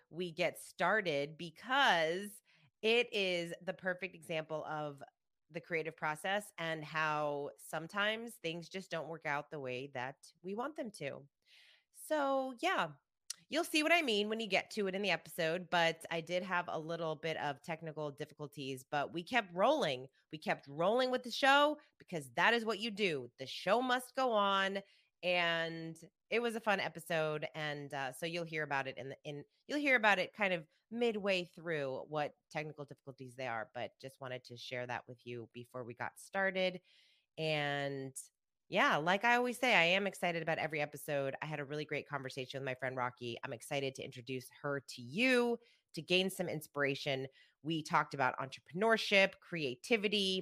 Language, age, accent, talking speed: English, 30-49, American, 180 wpm